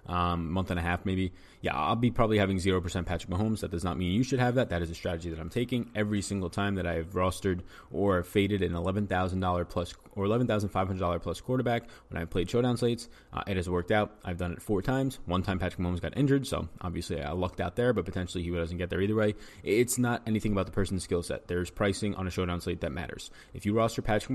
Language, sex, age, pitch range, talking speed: English, male, 20-39, 90-105 Hz, 245 wpm